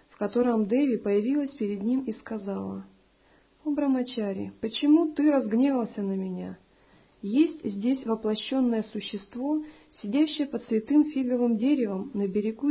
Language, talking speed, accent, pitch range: Russian, 120 wpm, native, 195-255 Hz